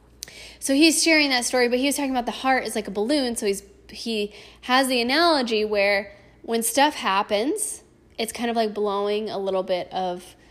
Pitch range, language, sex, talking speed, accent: 195-270 Hz, English, female, 200 wpm, American